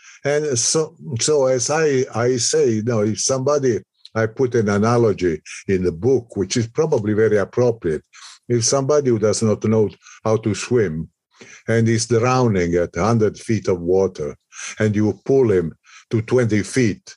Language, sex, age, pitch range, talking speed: English, male, 50-69, 100-120 Hz, 165 wpm